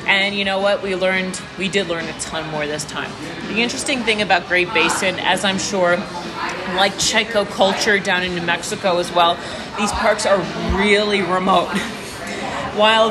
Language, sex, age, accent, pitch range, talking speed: English, female, 30-49, American, 185-215 Hz, 175 wpm